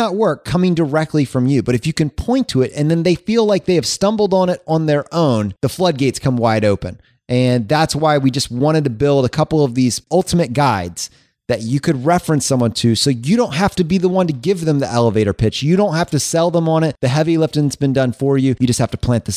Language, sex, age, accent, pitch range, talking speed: English, male, 30-49, American, 115-155 Hz, 265 wpm